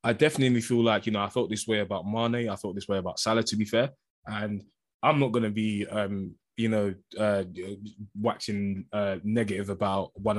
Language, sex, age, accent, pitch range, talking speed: English, male, 20-39, British, 105-120 Hz, 210 wpm